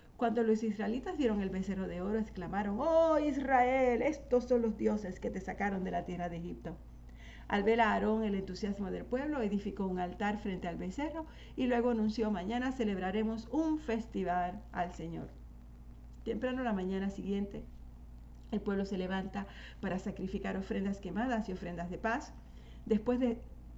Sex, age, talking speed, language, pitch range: female, 40-59, 160 wpm, Spanish, 175-225 Hz